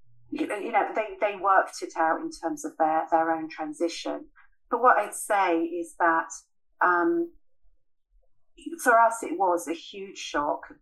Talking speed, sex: 155 wpm, female